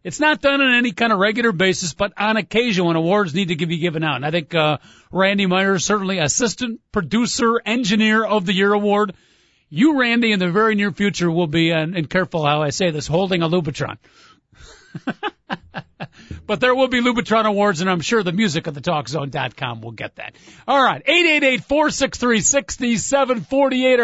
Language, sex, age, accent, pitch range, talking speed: English, male, 40-59, American, 170-225 Hz, 175 wpm